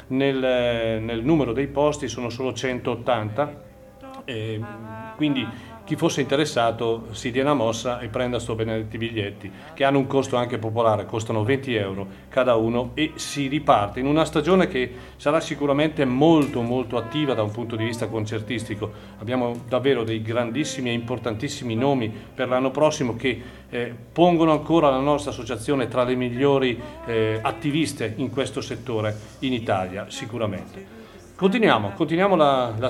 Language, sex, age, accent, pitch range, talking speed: Italian, male, 40-59, native, 115-140 Hz, 150 wpm